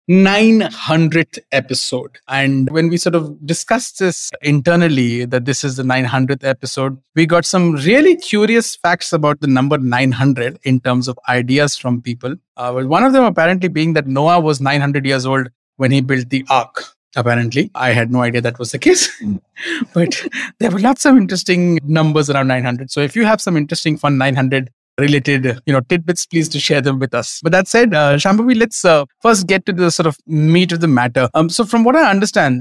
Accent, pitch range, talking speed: Indian, 135-180 Hz, 200 wpm